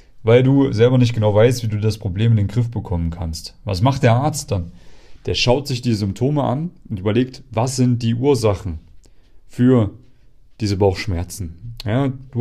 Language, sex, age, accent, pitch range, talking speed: German, male, 30-49, German, 105-135 Hz, 180 wpm